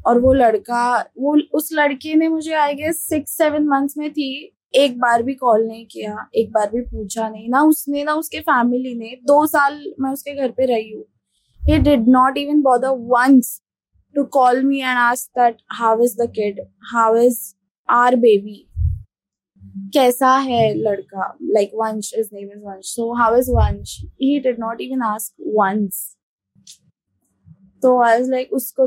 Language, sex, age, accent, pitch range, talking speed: Hindi, female, 20-39, native, 205-275 Hz, 150 wpm